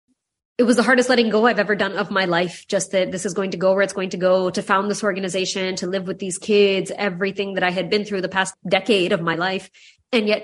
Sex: female